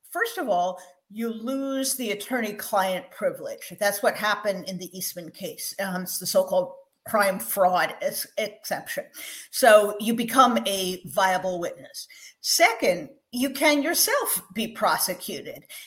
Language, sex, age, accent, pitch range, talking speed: English, female, 50-69, American, 205-280 Hz, 130 wpm